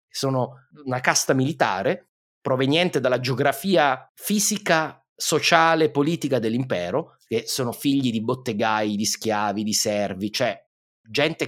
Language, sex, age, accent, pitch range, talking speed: Italian, male, 30-49, native, 115-155 Hz, 115 wpm